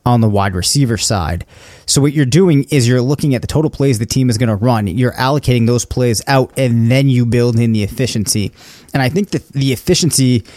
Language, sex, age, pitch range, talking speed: English, male, 30-49, 115-135 Hz, 225 wpm